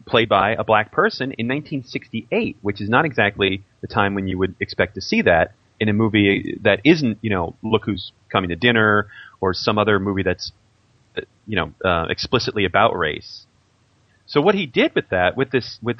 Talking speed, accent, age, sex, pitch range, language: 190 wpm, American, 30-49, male, 100-125 Hz, English